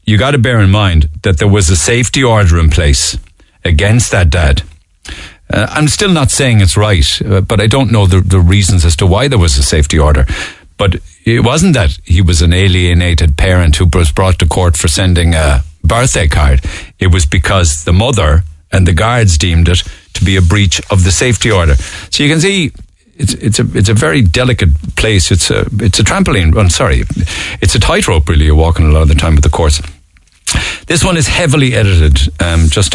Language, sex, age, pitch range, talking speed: English, male, 50-69, 80-105 Hz, 215 wpm